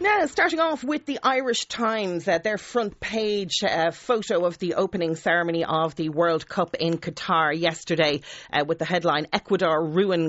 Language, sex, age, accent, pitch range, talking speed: English, female, 40-59, Irish, 150-180 Hz, 175 wpm